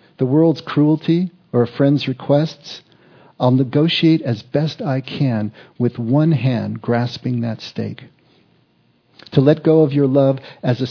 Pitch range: 120-145 Hz